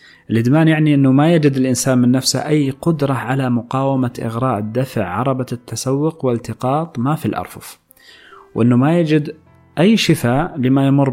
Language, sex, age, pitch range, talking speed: Arabic, male, 30-49, 110-135 Hz, 145 wpm